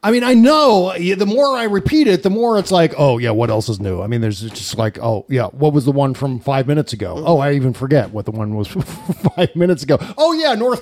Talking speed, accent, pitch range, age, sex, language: 265 wpm, American, 135-195 Hz, 40-59, male, English